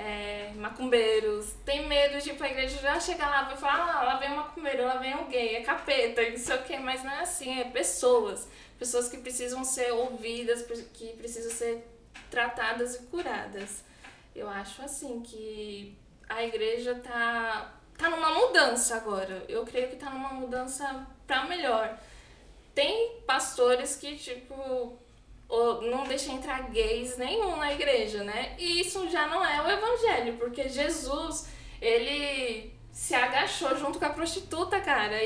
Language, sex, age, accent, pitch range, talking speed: Portuguese, female, 10-29, Brazilian, 235-310 Hz, 155 wpm